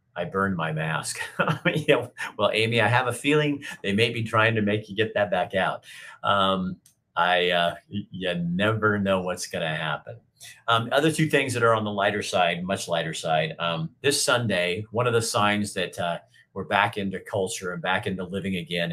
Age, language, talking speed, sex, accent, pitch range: 40-59, English, 200 wpm, male, American, 90-115 Hz